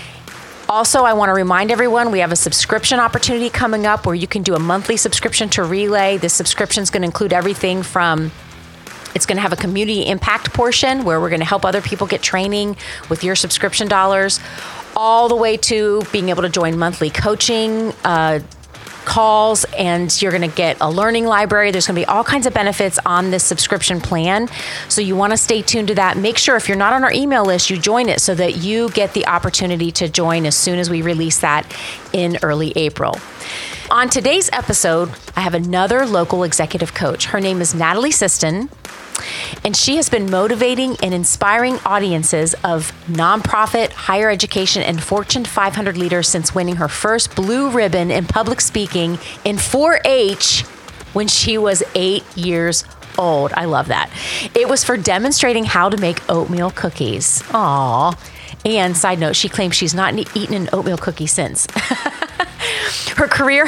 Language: English